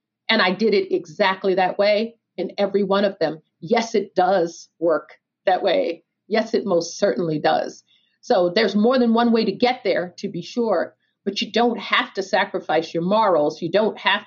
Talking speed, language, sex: 195 wpm, English, female